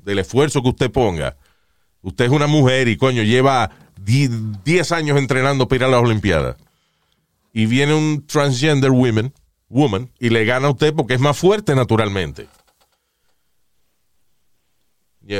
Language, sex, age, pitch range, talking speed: Spanish, male, 40-59, 110-150 Hz, 145 wpm